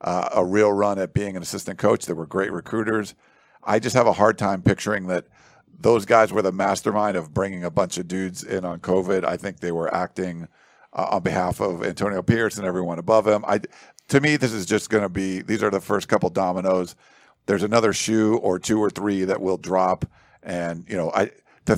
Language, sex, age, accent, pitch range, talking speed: English, male, 50-69, American, 95-110 Hz, 220 wpm